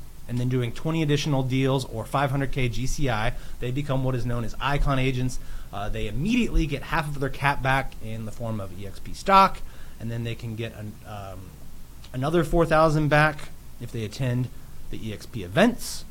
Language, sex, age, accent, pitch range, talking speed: English, male, 30-49, American, 110-140 Hz, 180 wpm